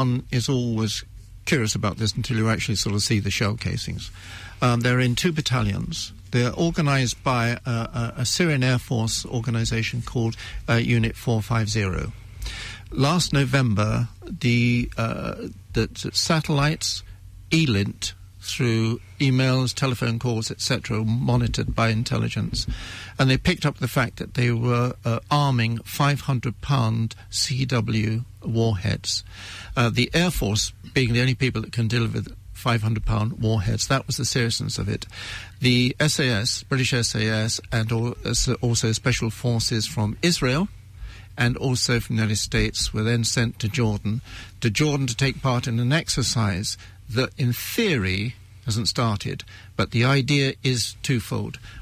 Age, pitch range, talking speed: 60-79, 105-130 Hz, 140 wpm